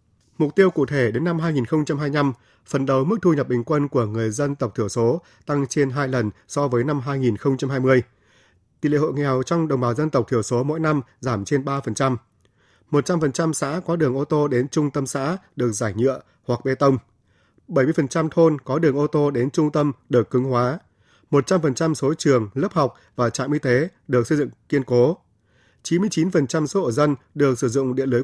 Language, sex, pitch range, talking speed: Vietnamese, male, 125-155 Hz, 200 wpm